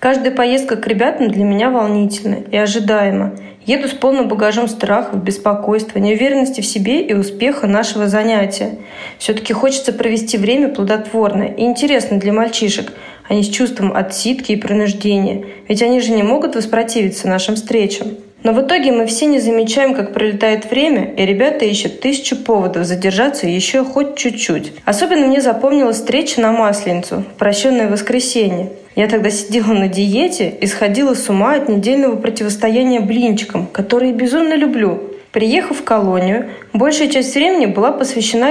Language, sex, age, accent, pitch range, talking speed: Russian, female, 20-39, native, 205-255 Hz, 155 wpm